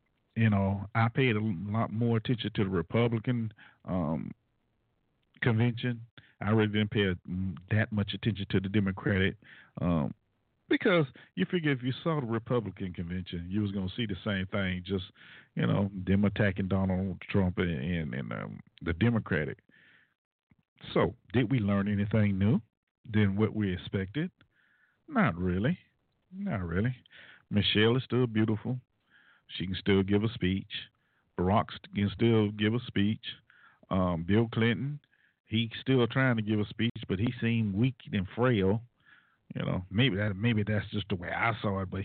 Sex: male